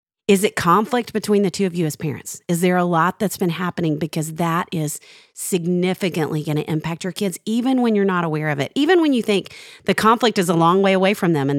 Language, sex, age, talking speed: English, female, 40-59, 240 wpm